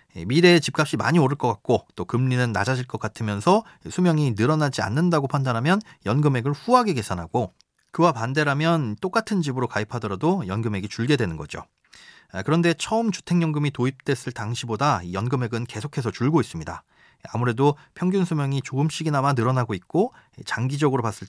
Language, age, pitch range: Korean, 30-49, 115-160 Hz